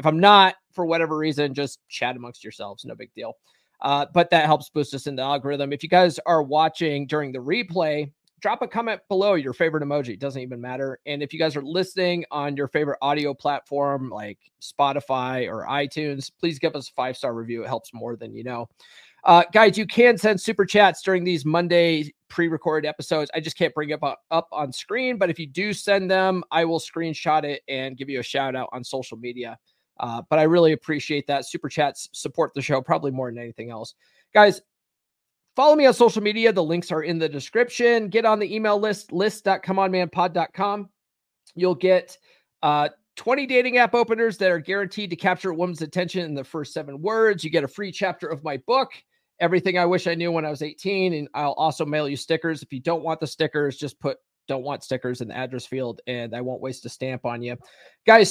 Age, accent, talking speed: 30-49, American, 215 wpm